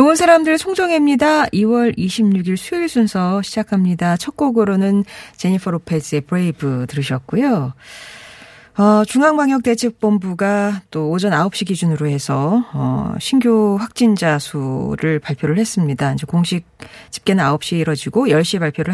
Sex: female